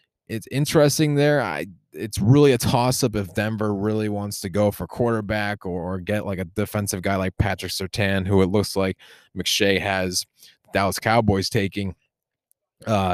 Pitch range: 95-110 Hz